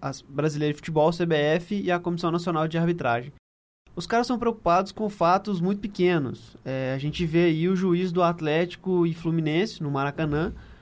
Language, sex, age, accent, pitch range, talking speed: Portuguese, male, 20-39, Brazilian, 165-205 Hz, 170 wpm